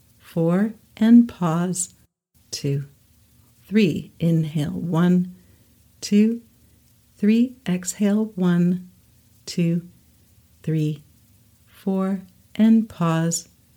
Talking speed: 70 wpm